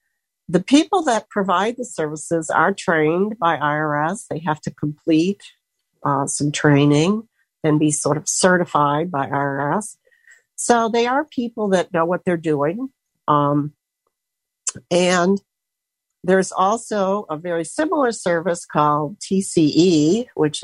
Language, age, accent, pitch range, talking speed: English, 60-79, American, 150-195 Hz, 130 wpm